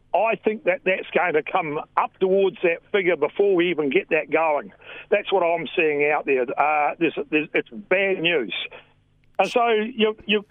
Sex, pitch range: male, 170-220 Hz